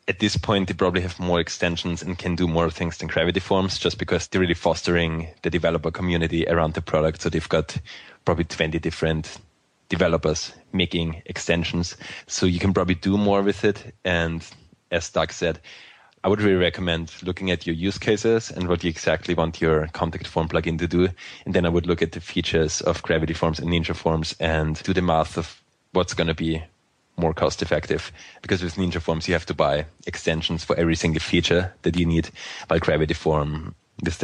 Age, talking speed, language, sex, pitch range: 20-39, 200 wpm, English, male, 80-90 Hz